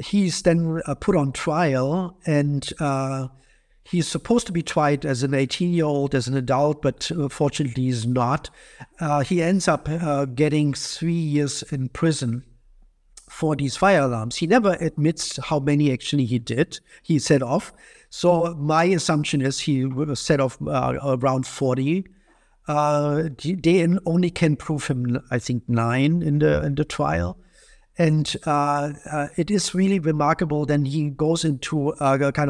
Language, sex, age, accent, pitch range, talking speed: English, male, 50-69, German, 130-155 Hz, 155 wpm